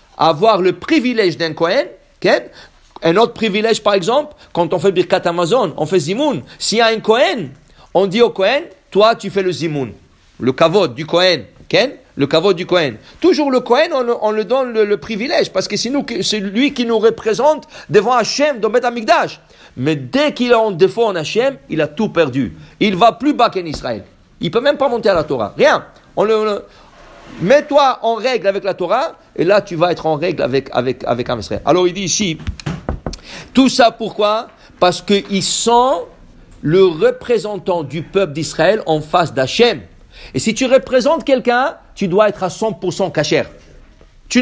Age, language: 50-69, English